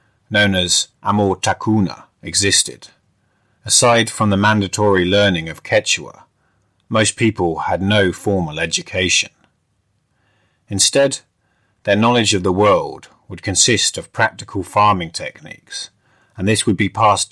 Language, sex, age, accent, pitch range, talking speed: English, male, 30-49, British, 90-110 Hz, 120 wpm